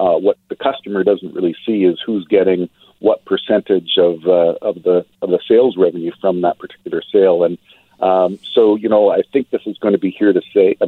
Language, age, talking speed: English, 50-69, 220 wpm